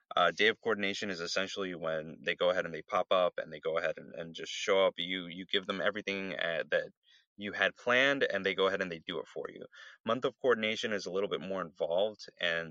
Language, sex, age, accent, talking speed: English, male, 30-49, American, 250 wpm